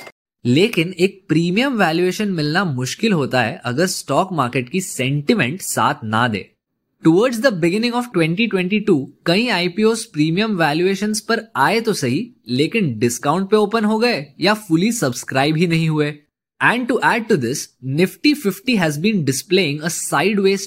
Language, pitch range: Hindi, 145-205 Hz